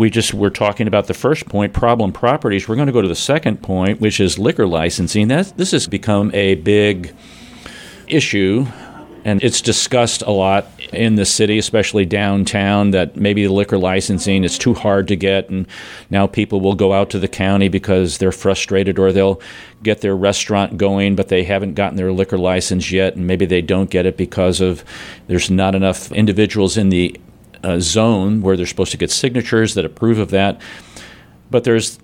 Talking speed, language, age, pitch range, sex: 195 wpm, English, 40-59, 95-110 Hz, male